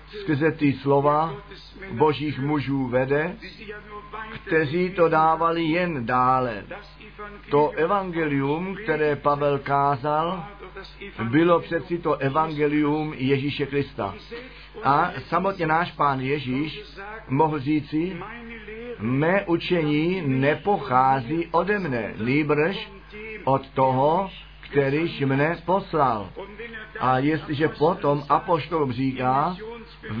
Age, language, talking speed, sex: 50-69, Czech, 90 wpm, male